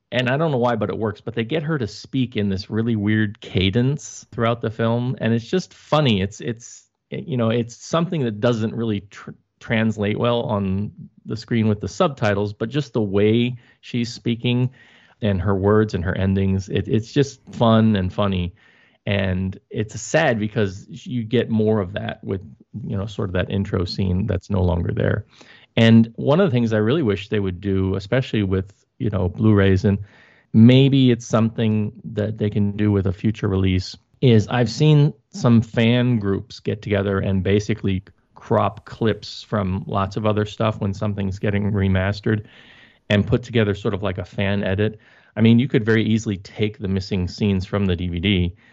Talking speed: 190 wpm